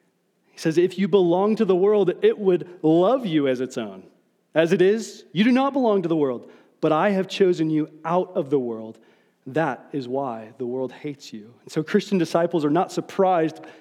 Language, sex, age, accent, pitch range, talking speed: English, male, 30-49, American, 165-200 Hz, 210 wpm